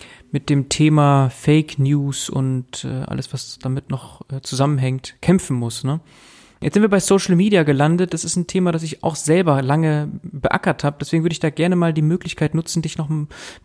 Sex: male